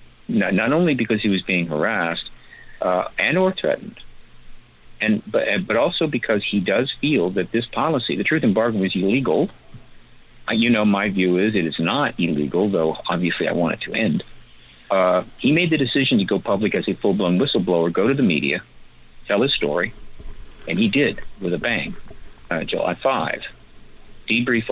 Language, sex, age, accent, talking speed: English, male, 50-69, American, 180 wpm